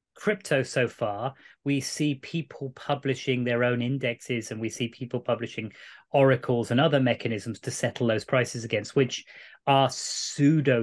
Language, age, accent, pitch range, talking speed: English, 30-49, British, 120-145 Hz, 150 wpm